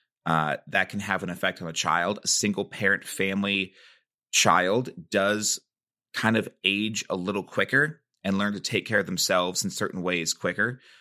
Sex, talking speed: male, 175 wpm